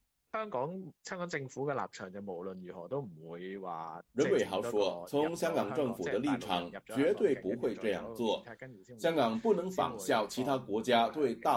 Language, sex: Chinese, male